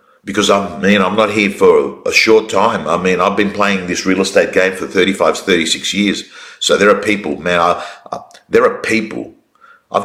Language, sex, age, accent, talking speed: English, male, 50-69, Australian, 190 wpm